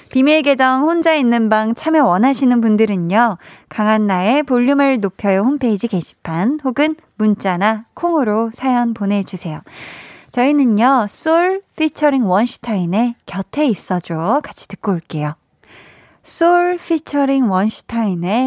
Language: Korean